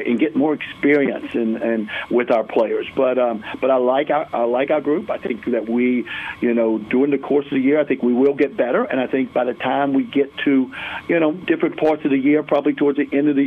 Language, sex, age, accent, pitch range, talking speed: English, male, 50-69, American, 130-150 Hz, 265 wpm